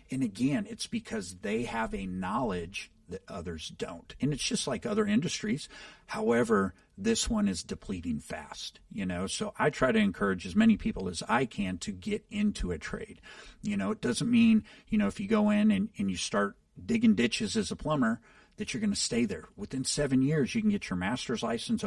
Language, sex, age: English, male, 50-69